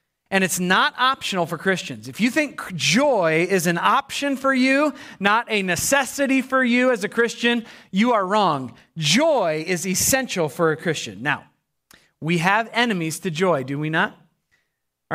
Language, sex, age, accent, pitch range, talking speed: English, male, 30-49, American, 170-230 Hz, 165 wpm